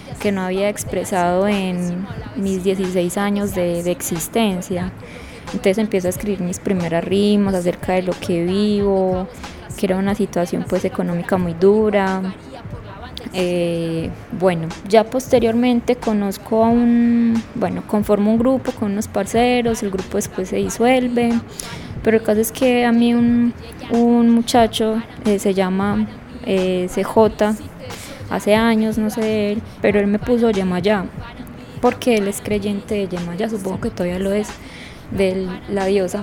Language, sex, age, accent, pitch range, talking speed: Spanish, female, 20-39, Colombian, 185-220 Hz, 145 wpm